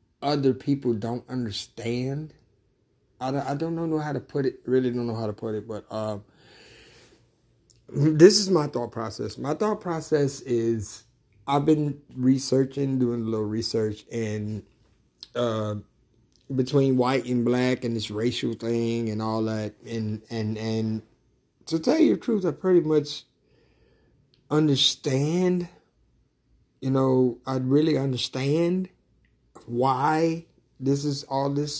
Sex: male